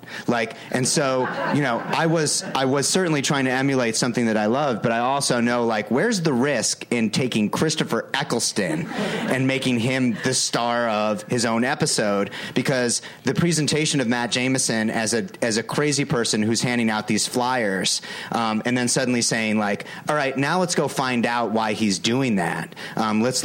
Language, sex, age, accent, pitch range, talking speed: English, male, 30-49, American, 110-135 Hz, 190 wpm